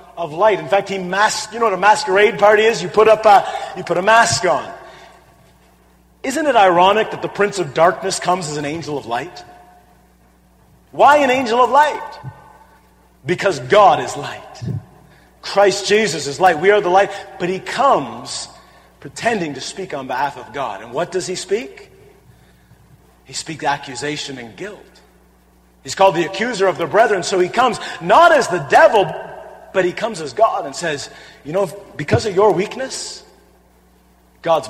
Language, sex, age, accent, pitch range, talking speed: English, male, 40-59, American, 135-200 Hz, 175 wpm